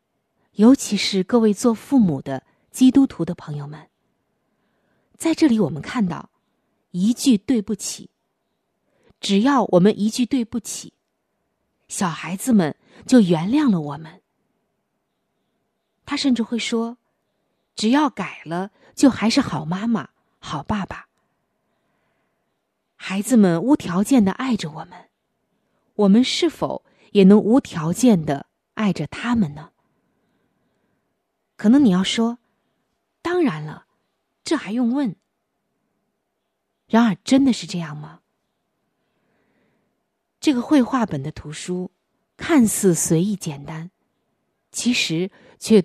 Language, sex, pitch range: Chinese, female, 170-240 Hz